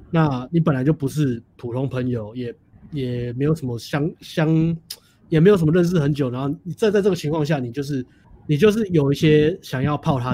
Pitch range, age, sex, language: 120-155 Hz, 20-39, male, Chinese